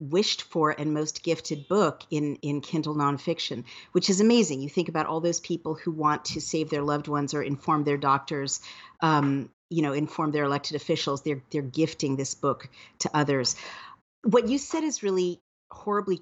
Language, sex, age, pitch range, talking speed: English, female, 50-69, 145-170 Hz, 185 wpm